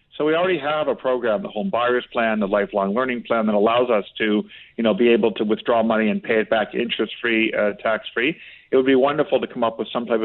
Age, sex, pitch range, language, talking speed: 50-69, male, 110-125 Hz, English, 245 wpm